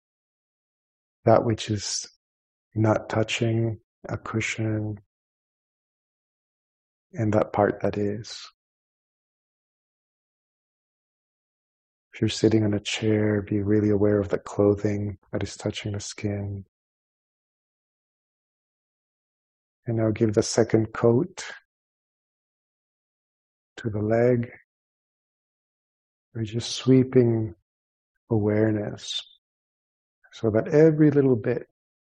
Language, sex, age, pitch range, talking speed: English, male, 50-69, 105-120 Hz, 90 wpm